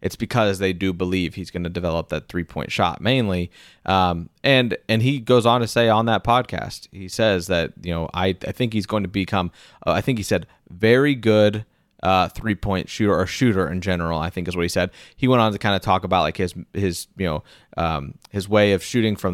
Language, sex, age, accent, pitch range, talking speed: English, male, 30-49, American, 90-110 Hz, 235 wpm